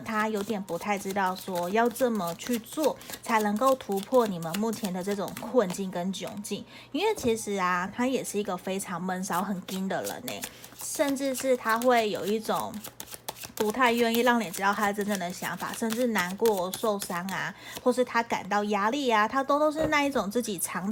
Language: Chinese